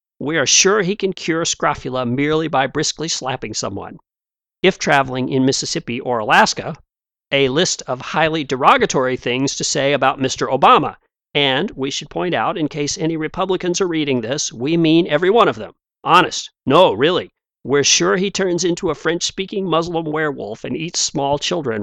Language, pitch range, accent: English, 130-165 Hz, American